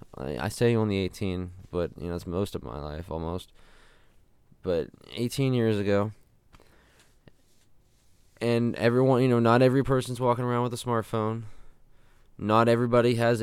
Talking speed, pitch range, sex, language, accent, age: 145 wpm, 85-110 Hz, male, English, American, 20-39